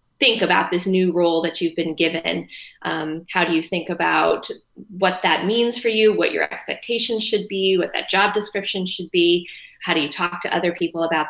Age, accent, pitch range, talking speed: 20-39, American, 165-195 Hz, 205 wpm